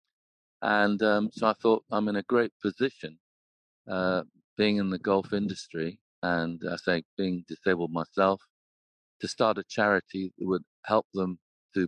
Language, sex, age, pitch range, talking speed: English, male, 50-69, 90-105 Hz, 155 wpm